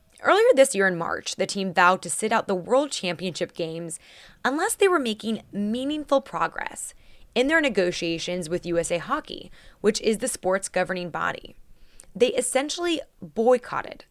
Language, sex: English, female